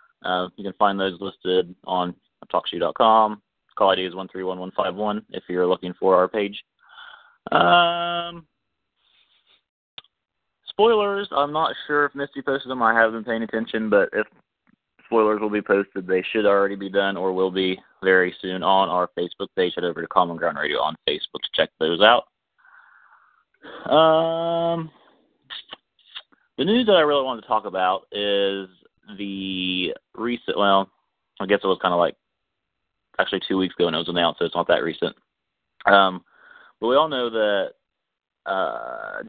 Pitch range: 95-140 Hz